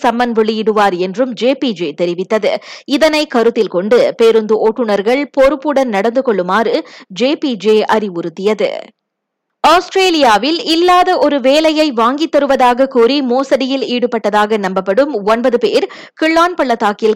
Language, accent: Tamil, native